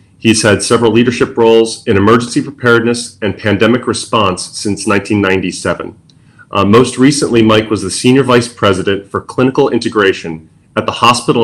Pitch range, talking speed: 100-120 Hz, 145 wpm